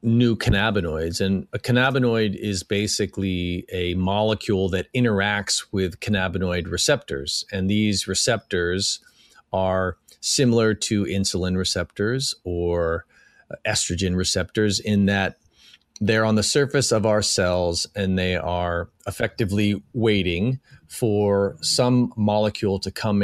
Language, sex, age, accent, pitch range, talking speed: English, male, 40-59, American, 90-110 Hz, 115 wpm